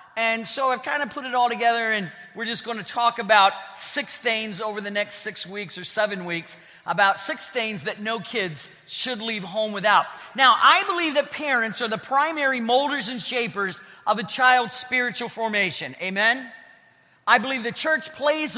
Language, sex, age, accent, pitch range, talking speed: English, male, 40-59, American, 200-260 Hz, 185 wpm